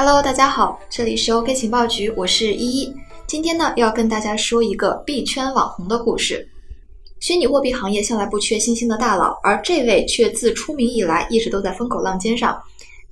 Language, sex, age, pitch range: Chinese, female, 20-39, 205-260 Hz